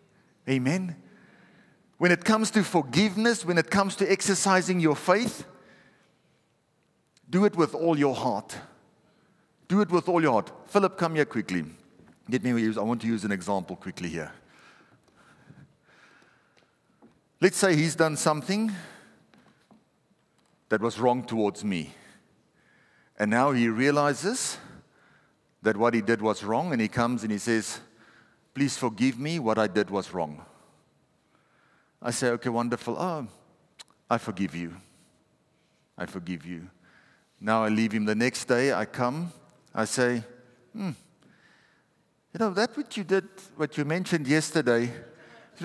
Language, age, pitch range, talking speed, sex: English, 50-69, 115-180 Hz, 140 wpm, male